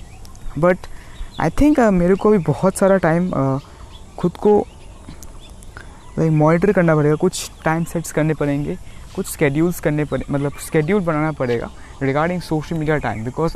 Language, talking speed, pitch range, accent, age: Hindi, 140 wpm, 130-165 Hz, native, 20-39